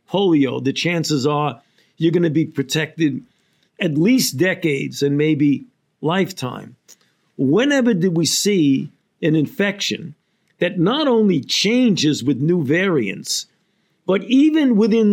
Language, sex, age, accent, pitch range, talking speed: English, male, 50-69, American, 155-200 Hz, 125 wpm